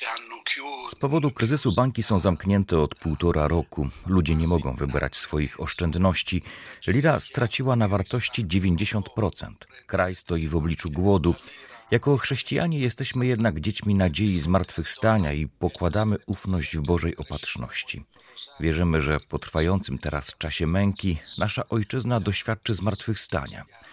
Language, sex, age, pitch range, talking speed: Polish, male, 40-59, 85-110 Hz, 125 wpm